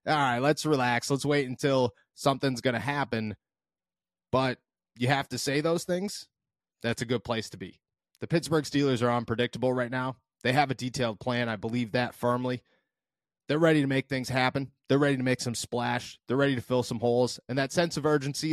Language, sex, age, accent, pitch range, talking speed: English, male, 30-49, American, 115-140 Hz, 205 wpm